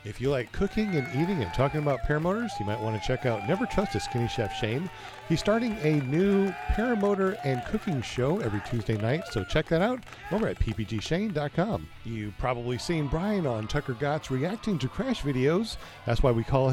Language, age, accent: English, 50-69, American